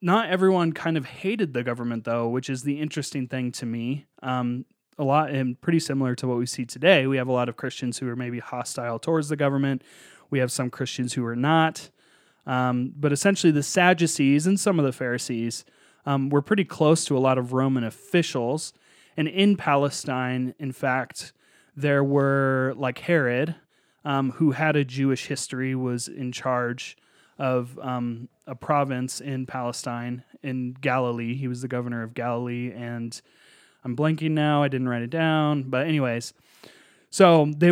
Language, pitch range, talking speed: English, 125-150 Hz, 180 wpm